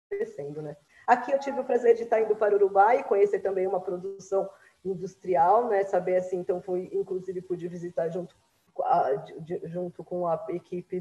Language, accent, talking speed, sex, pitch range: Portuguese, Brazilian, 170 wpm, female, 180-250 Hz